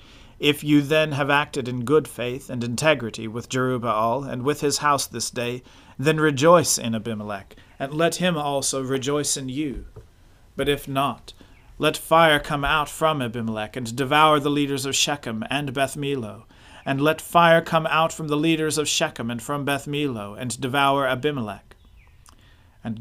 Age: 40-59